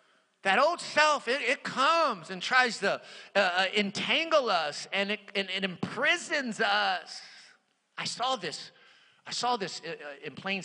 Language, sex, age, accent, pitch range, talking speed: English, male, 50-69, American, 135-200 Hz, 145 wpm